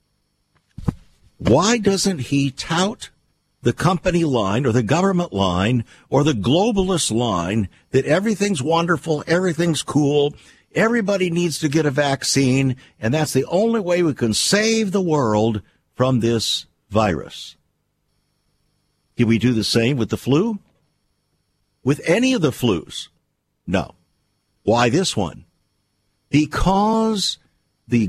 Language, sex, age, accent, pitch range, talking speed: English, male, 50-69, American, 110-170 Hz, 125 wpm